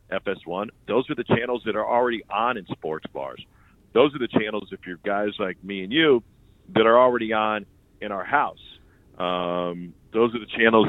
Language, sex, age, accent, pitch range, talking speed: English, male, 40-59, American, 90-120 Hz, 195 wpm